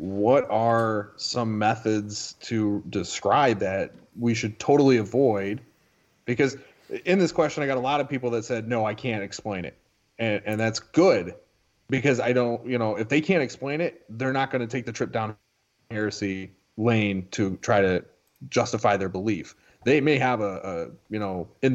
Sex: male